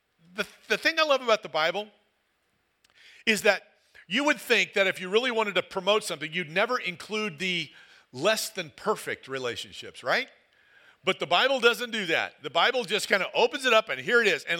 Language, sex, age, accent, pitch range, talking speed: English, male, 50-69, American, 170-220 Hz, 200 wpm